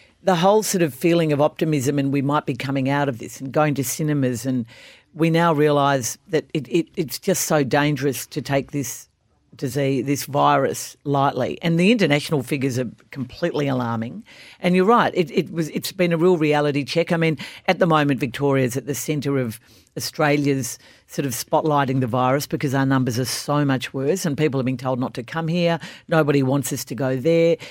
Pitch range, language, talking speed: 135-170 Hz, English, 205 wpm